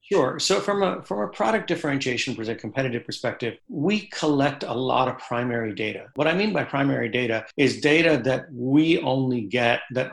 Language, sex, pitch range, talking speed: English, male, 125-145 Hz, 190 wpm